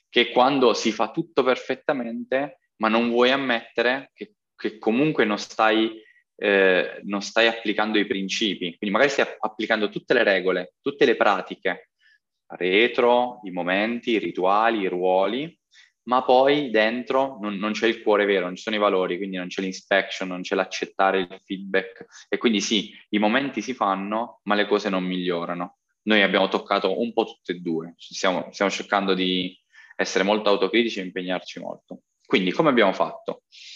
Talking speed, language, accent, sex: 170 wpm, Italian, native, male